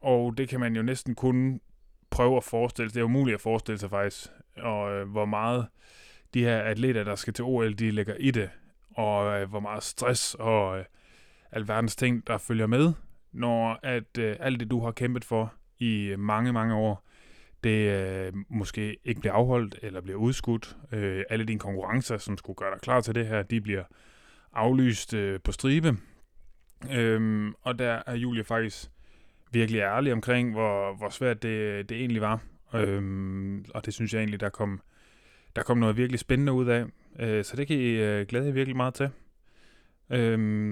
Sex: male